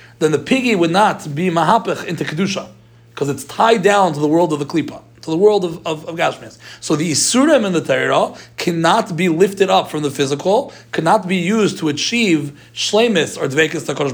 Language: English